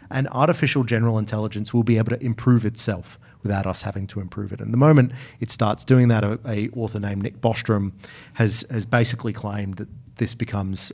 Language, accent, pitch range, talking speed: English, Australian, 105-125 Hz, 195 wpm